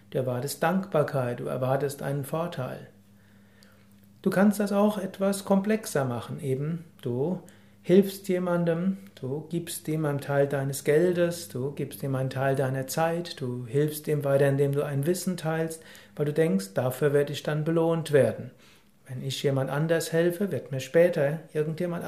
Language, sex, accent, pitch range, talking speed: German, male, German, 135-175 Hz, 160 wpm